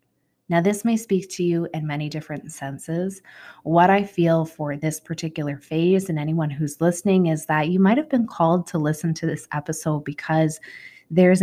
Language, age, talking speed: English, 20-39, 185 wpm